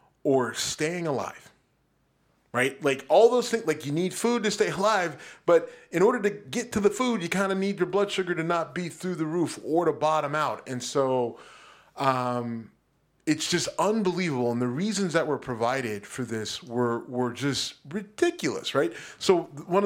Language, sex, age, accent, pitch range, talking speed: English, male, 30-49, American, 145-215 Hz, 185 wpm